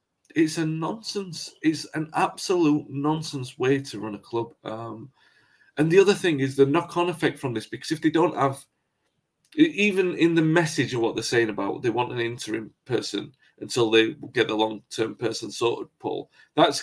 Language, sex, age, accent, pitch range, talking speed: English, male, 30-49, British, 130-180 Hz, 180 wpm